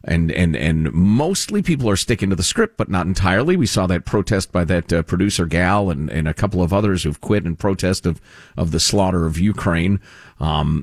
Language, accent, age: English, American, 40-59